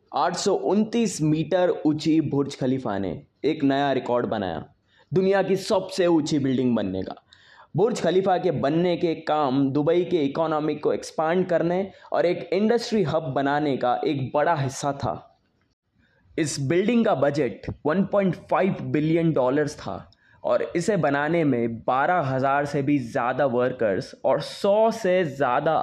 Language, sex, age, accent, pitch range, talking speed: Hindi, male, 20-39, native, 135-175 Hz, 140 wpm